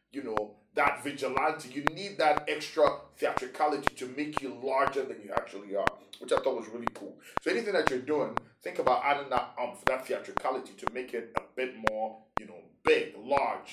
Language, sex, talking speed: English, male, 195 wpm